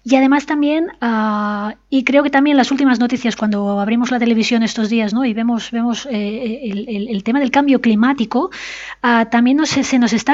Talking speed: 175 wpm